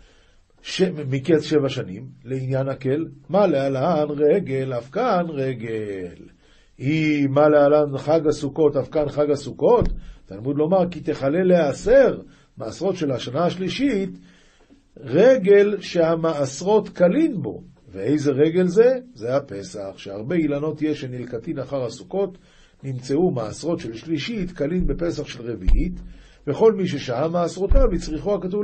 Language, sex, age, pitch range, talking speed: Hebrew, male, 50-69, 135-185 Hz, 125 wpm